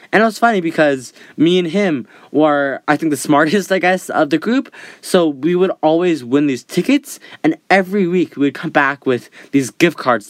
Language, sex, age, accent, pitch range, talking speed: English, male, 10-29, American, 140-200 Hz, 205 wpm